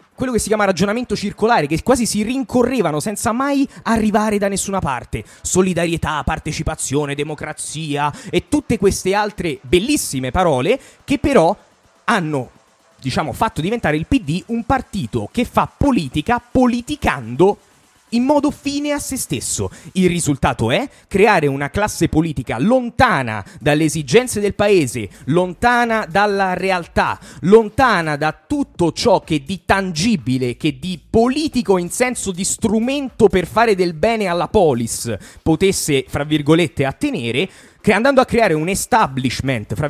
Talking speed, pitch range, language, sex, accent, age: 135 wpm, 150-215 Hz, Italian, male, native, 30-49